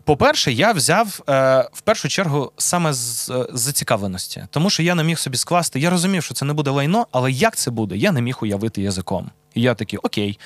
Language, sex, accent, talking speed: Ukrainian, male, native, 205 wpm